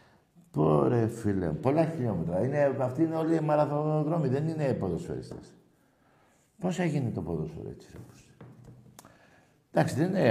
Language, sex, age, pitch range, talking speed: Greek, male, 60-79, 100-135 Hz, 130 wpm